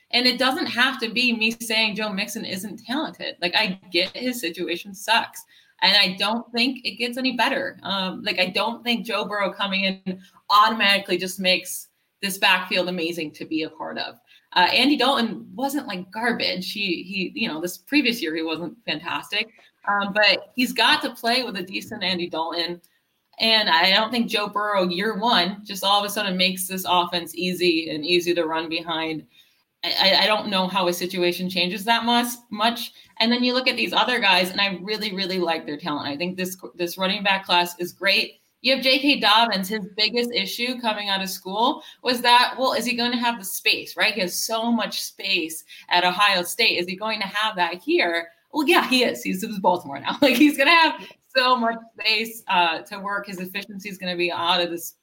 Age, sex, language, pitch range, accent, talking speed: 20-39, female, English, 180-235 Hz, American, 210 wpm